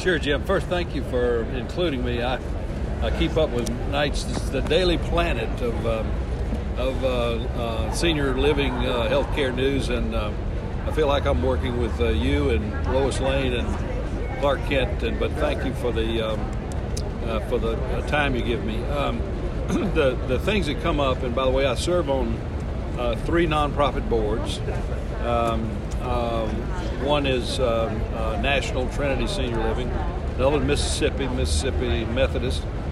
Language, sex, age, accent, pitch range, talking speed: English, male, 60-79, American, 85-125 Hz, 165 wpm